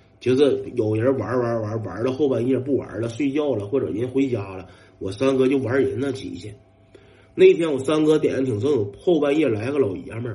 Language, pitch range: Chinese, 100-125 Hz